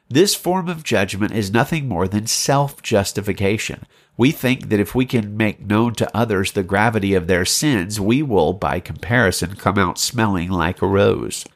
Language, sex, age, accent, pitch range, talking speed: English, male, 50-69, American, 100-130 Hz, 175 wpm